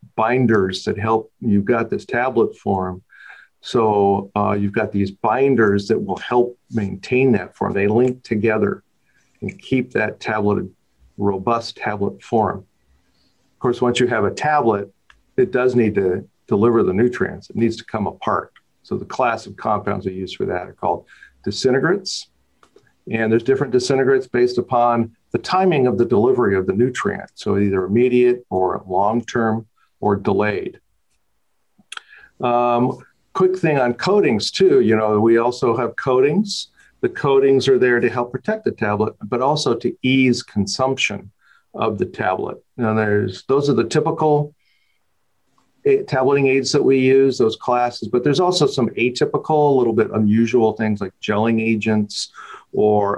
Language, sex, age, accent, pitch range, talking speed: English, male, 50-69, American, 105-130 Hz, 155 wpm